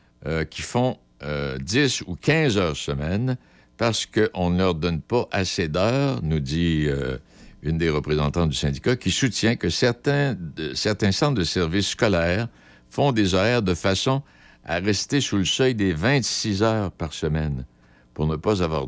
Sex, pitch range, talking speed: male, 75-105 Hz, 170 wpm